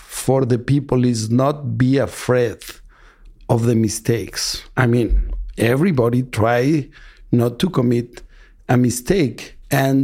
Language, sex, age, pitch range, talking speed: Russian, male, 50-69, 120-140 Hz, 120 wpm